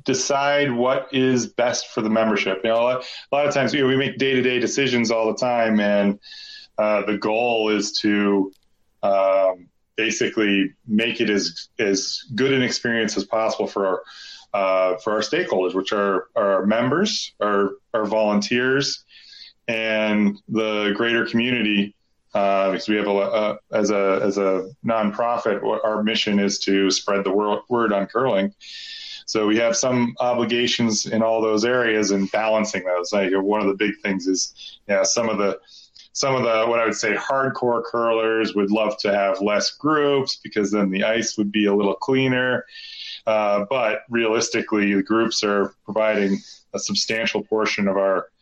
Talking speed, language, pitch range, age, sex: 170 wpm, English, 100-120 Hz, 30-49, male